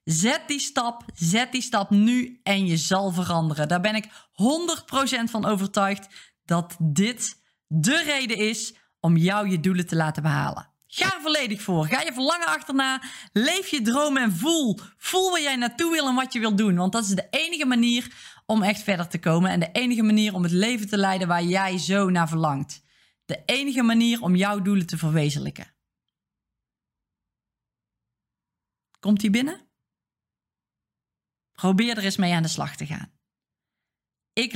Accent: Dutch